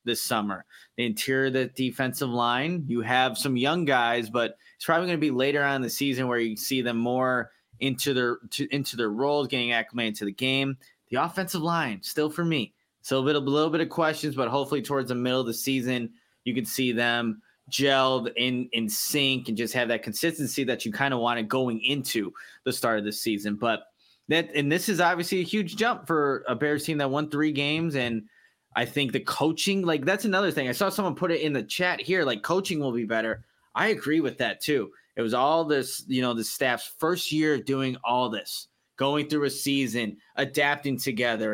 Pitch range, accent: 120-145 Hz, American